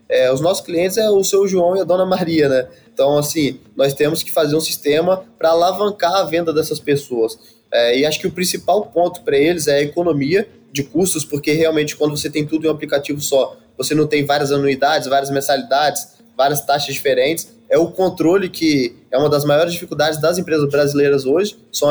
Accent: Brazilian